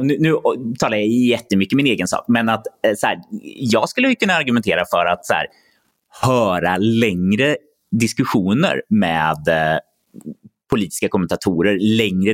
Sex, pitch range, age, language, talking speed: male, 95-135 Hz, 30-49, Swedish, 130 wpm